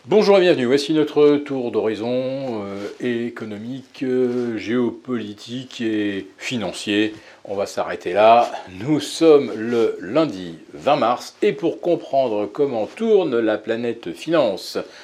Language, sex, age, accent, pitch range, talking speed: French, male, 40-59, French, 115-160 Hz, 120 wpm